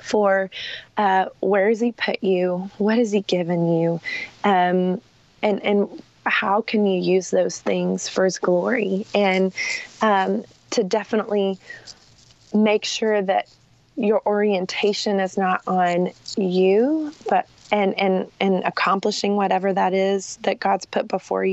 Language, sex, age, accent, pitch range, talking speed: English, female, 20-39, American, 190-220 Hz, 135 wpm